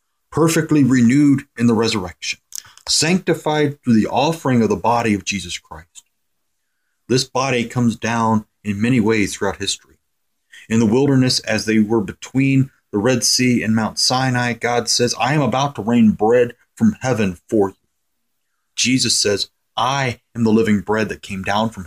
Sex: male